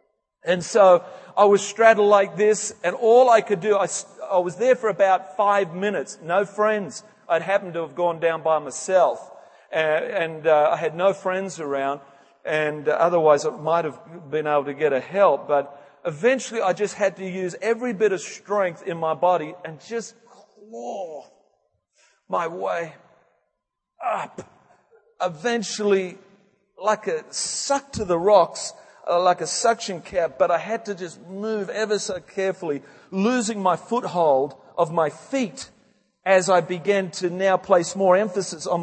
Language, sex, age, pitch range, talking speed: English, male, 40-59, 165-210 Hz, 165 wpm